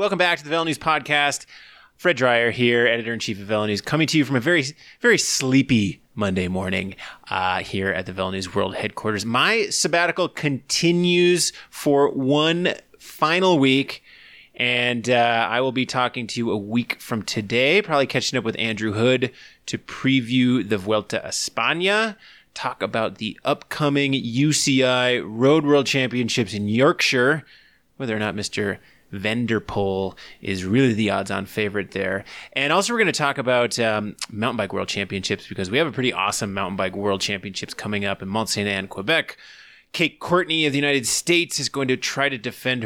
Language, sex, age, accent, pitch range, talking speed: English, male, 20-39, American, 105-140 Hz, 170 wpm